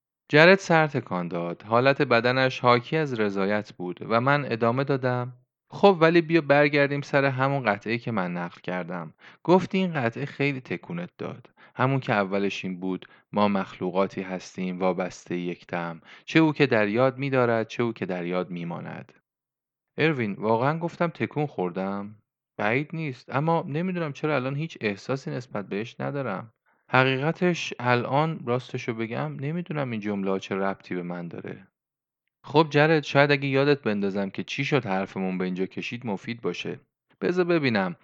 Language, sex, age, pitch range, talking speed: Persian, male, 30-49, 100-145 Hz, 150 wpm